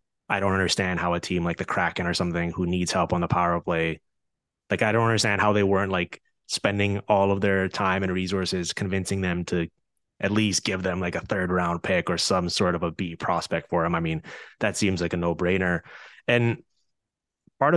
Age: 20-39